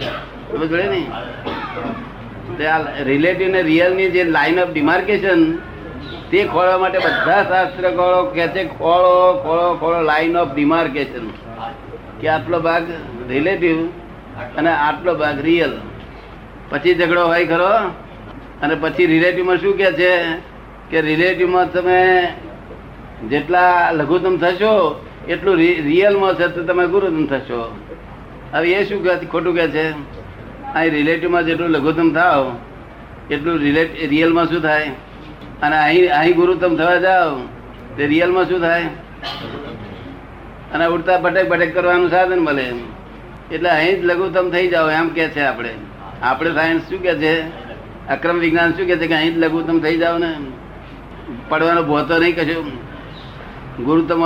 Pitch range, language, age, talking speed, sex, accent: 150-180 Hz, Gujarati, 60-79, 100 wpm, male, native